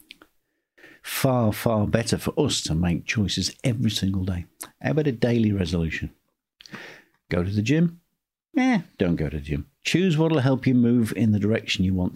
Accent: British